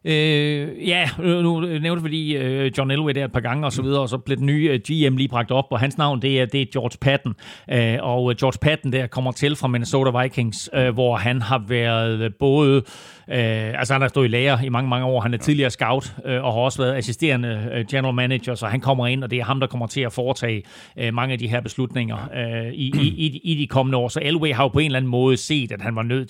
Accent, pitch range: native, 125-145 Hz